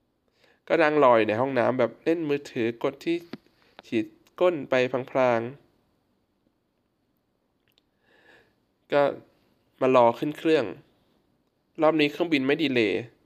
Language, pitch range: Thai, 115-150 Hz